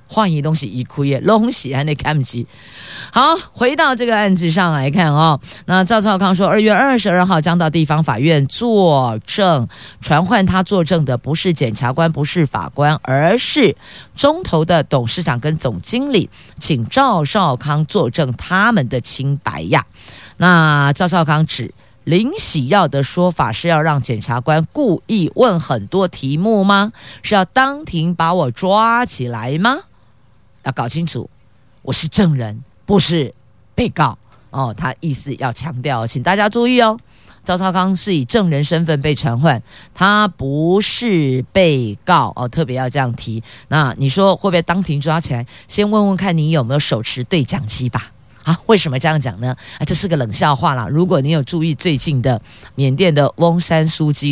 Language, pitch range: Chinese, 130-185 Hz